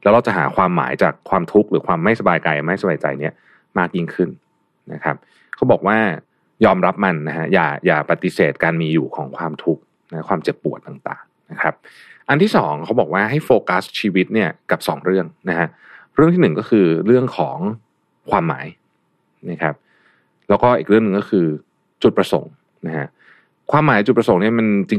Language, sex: Thai, male